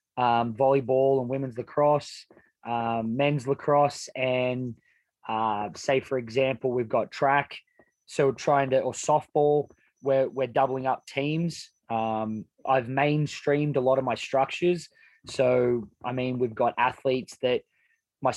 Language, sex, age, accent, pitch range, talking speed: English, male, 20-39, Australian, 125-145 Hz, 140 wpm